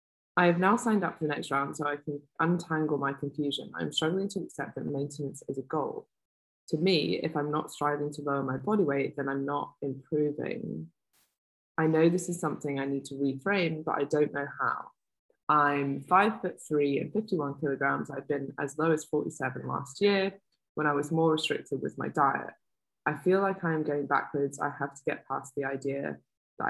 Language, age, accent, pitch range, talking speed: English, 20-39, British, 140-165 Hz, 200 wpm